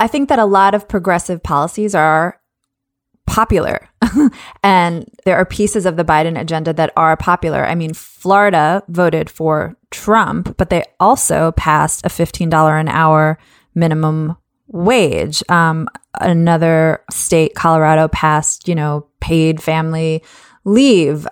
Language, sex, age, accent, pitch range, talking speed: English, female, 20-39, American, 160-185 Hz, 130 wpm